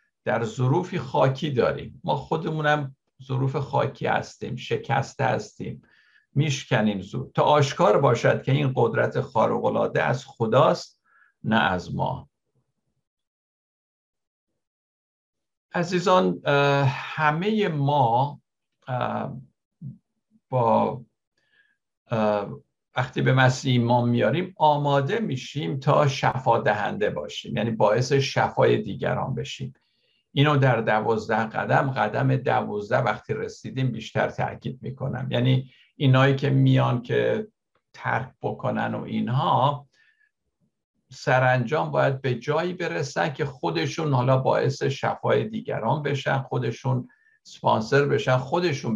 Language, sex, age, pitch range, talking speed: Persian, male, 60-79, 120-150 Hz, 100 wpm